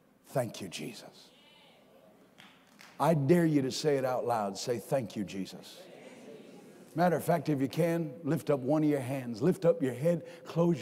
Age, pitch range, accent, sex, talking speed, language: 50-69, 150-200 Hz, American, male, 175 wpm, English